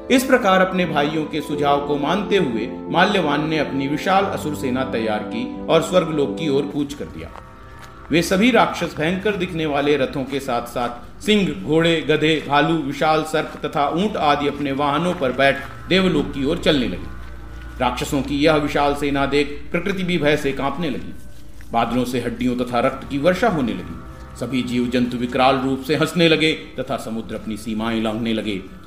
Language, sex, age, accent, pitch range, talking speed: Hindi, male, 40-59, native, 125-155 Hz, 140 wpm